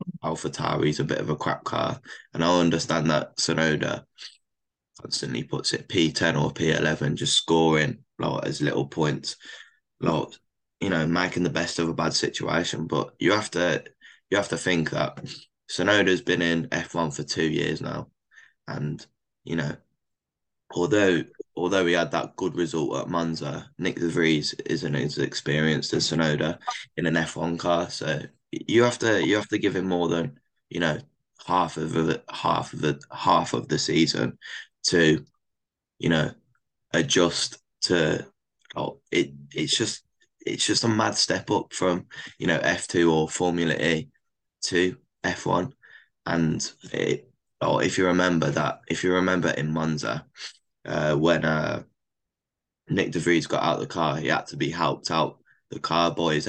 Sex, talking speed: male, 175 wpm